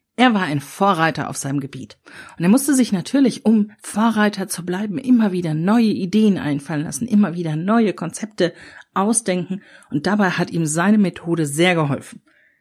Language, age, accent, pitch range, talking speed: German, 50-69, German, 170-230 Hz, 165 wpm